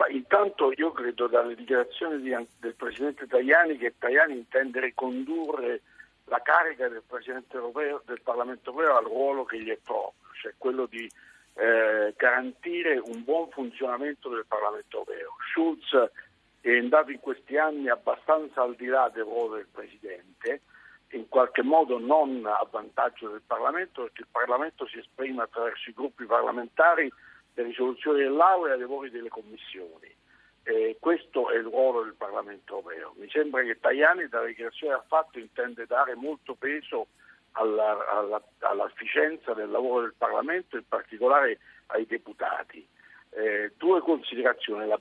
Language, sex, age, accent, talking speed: Italian, male, 60-79, native, 150 wpm